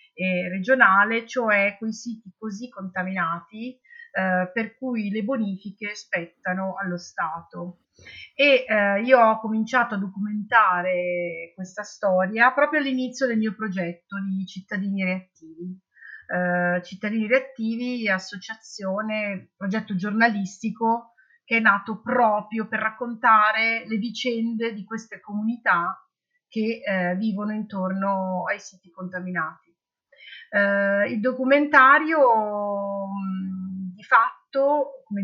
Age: 40-59